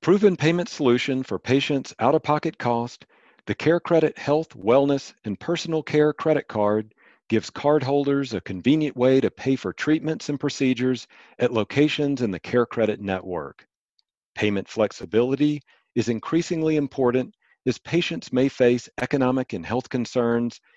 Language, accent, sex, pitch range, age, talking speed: English, American, male, 110-140 Hz, 40-59, 135 wpm